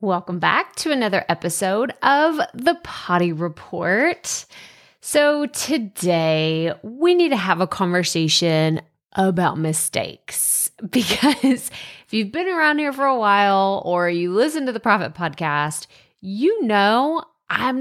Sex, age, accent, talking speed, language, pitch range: female, 30-49, American, 130 wpm, English, 175-225 Hz